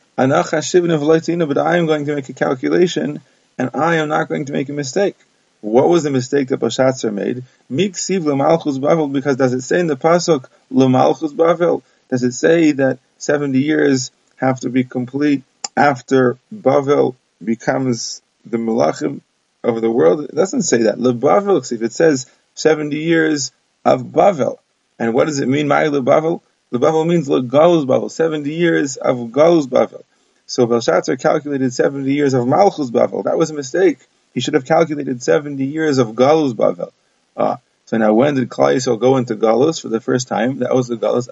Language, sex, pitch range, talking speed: English, male, 130-160 Hz, 165 wpm